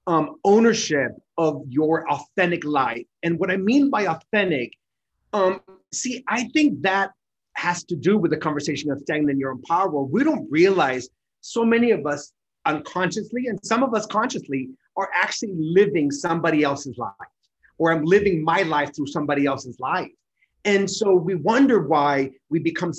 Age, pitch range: 30-49, 150-205 Hz